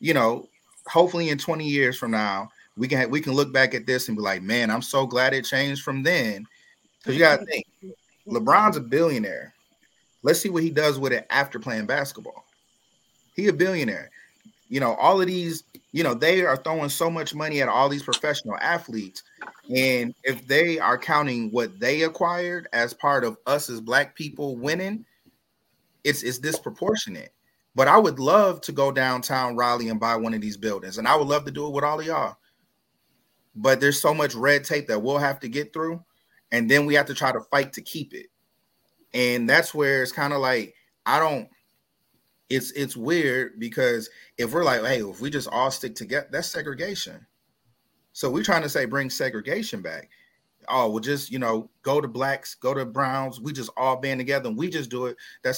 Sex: male